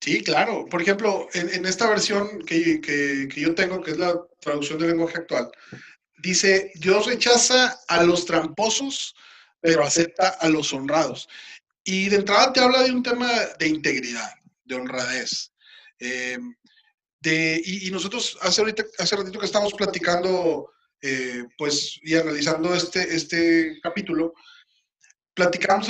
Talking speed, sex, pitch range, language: 145 wpm, male, 155-205 Hz, Spanish